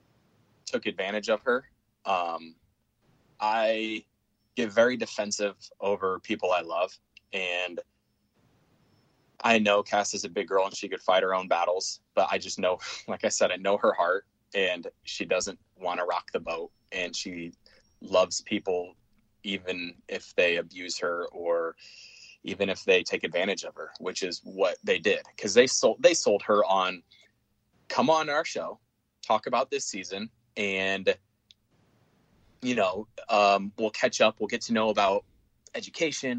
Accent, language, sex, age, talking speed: American, English, male, 20-39, 160 wpm